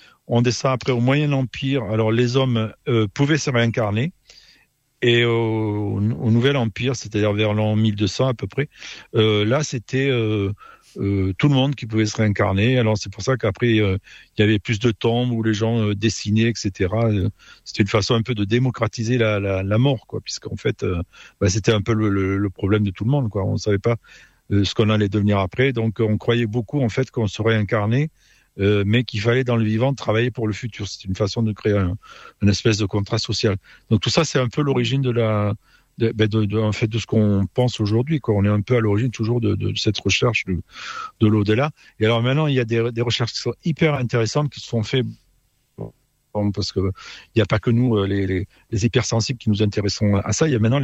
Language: French